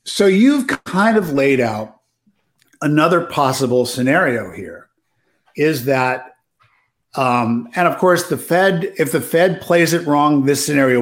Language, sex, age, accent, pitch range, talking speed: English, male, 50-69, American, 130-165 Hz, 140 wpm